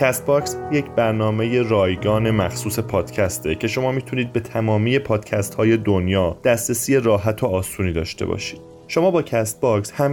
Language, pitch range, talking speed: Persian, 100-125 Hz, 140 wpm